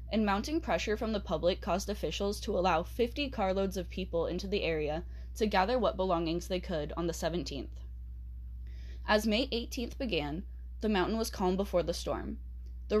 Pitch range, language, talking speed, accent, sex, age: 145-195 Hz, English, 175 wpm, American, female, 10-29